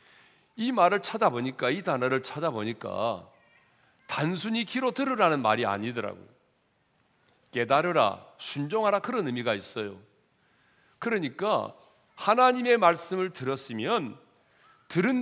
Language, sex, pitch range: Korean, male, 115-195 Hz